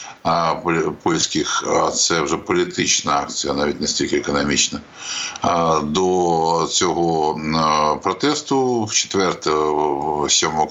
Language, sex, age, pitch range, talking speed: Ukrainian, male, 60-79, 80-100 Hz, 80 wpm